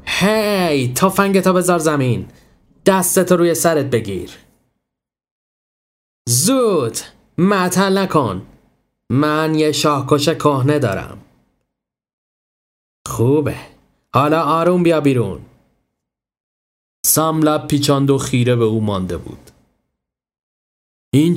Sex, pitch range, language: male, 105-155 Hz, Persian